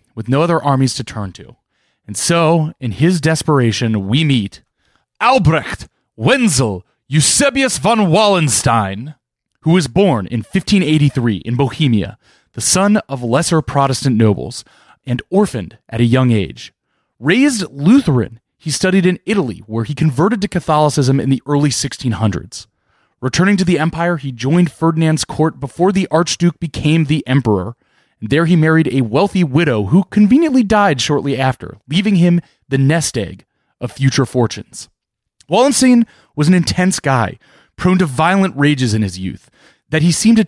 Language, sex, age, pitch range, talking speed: English, male, 30-49, 125-175 Hz, 150 wpm